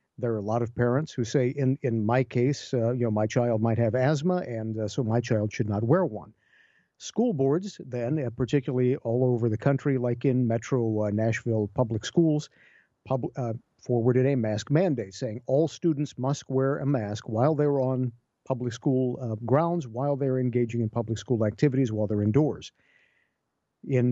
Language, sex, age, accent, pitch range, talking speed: English, male, 50-69, American, 115-140 Hz, 185 wpm